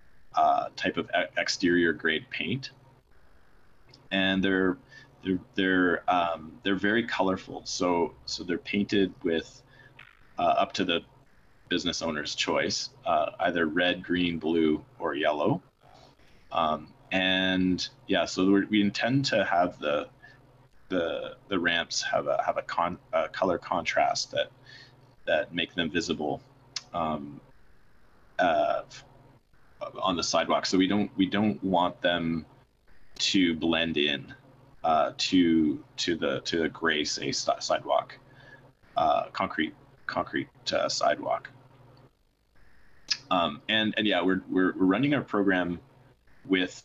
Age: 30-49